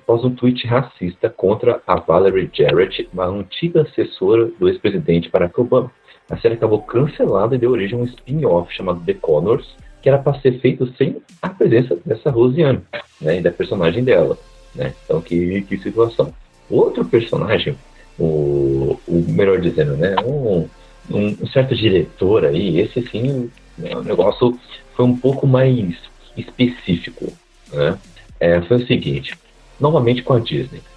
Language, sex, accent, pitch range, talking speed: Portuguese, male, Brazilian, 100-135 Hz, 155 wpm